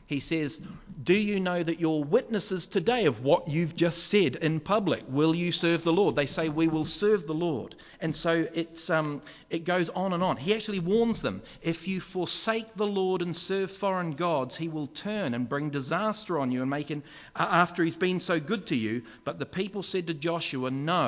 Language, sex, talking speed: English, male, 215 wpm